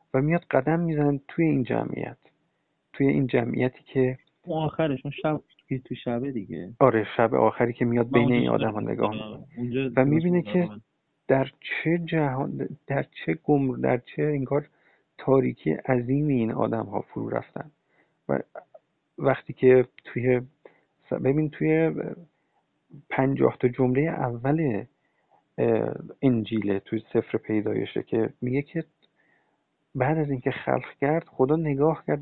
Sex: male